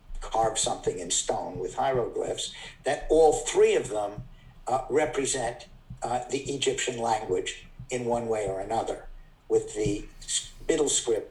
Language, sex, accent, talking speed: English, male, American, 140 wpm